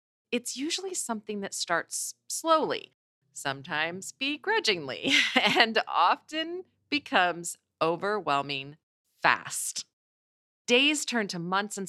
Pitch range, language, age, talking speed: 145-225 Hz, English, 40-59, 90 wpm